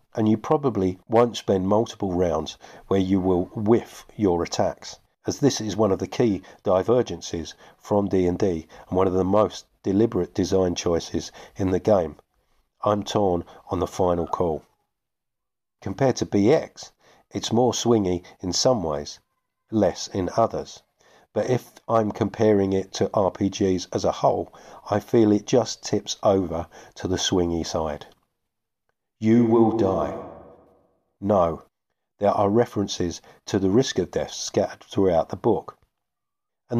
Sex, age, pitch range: male, 50-69, 90-110 Hz